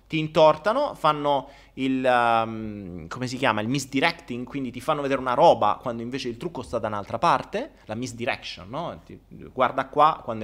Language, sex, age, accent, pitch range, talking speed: Italian, male, 30-49, native, 130-205 Hz, 180 wpm